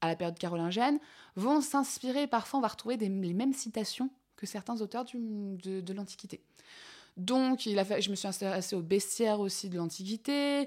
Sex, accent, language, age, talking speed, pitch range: female, French, French, 20-39, 190 wpm, 175-240 Hz